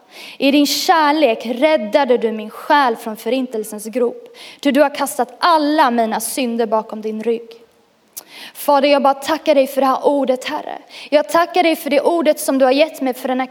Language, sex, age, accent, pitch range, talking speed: Swedish, female, 20-39, native, 235-300 Hz, 195 wpm